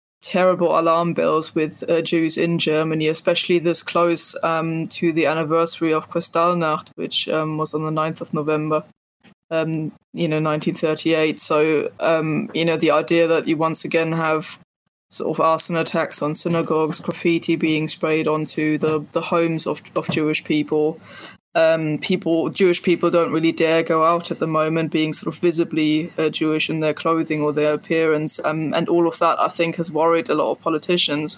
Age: 20-39